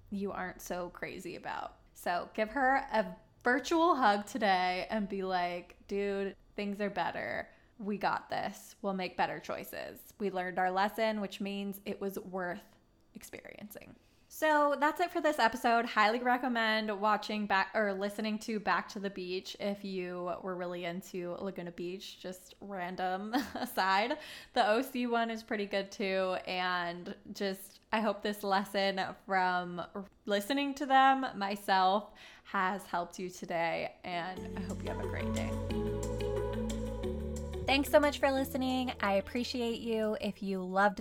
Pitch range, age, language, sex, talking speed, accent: 185-225 Hz, 20-39, English, female, 150 wpm, American